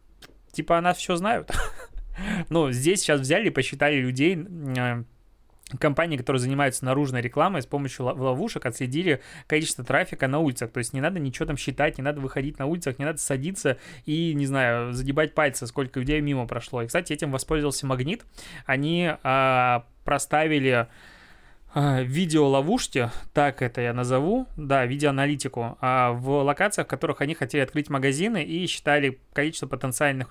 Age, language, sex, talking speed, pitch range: 20-39, Russian, male, 155 wpm, 130-155 Hz